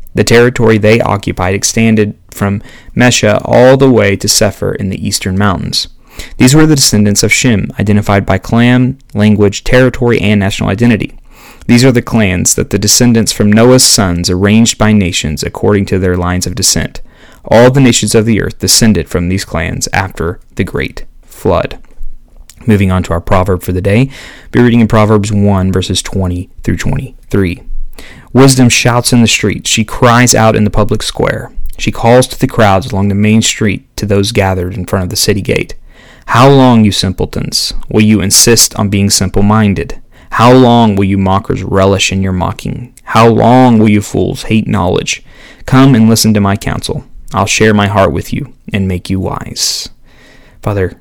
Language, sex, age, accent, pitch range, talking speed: English, male, 30-49, American, 95-120 Hz, 180 wpm